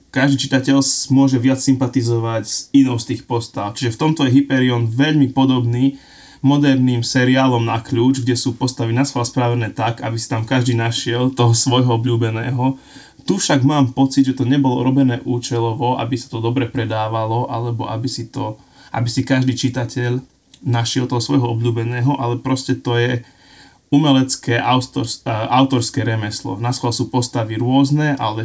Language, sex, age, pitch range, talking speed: Slovak, male, 20-39, 115-135 Hz, 150 wpm